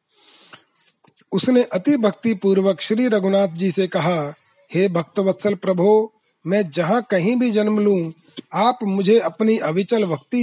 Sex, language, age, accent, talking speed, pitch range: male, Hindi, 30-49, native, 145 wpm, 180-220 Hz